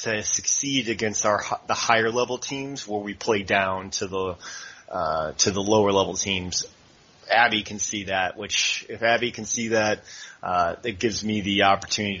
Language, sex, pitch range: English, male, 100-115 Hz